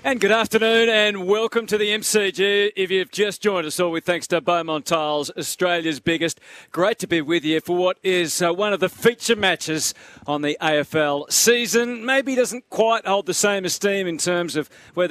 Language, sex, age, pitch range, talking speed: English, male, 40-59, 150-190 Hz, 195 wpm